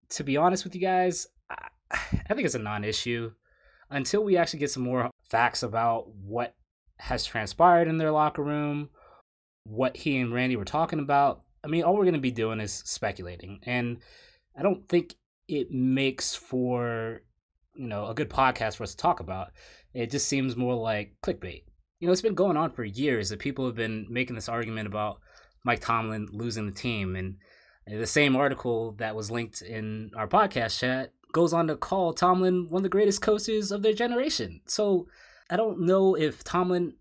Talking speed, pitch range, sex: 190 wpm, 115-170 Hz, male